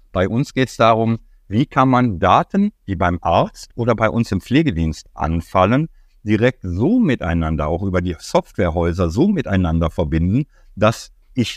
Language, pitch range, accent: German, 95-130 Hz, German